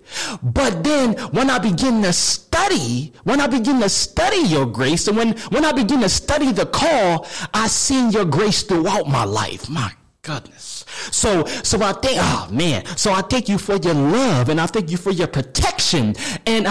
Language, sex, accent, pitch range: English, male, American, 125-205 Hz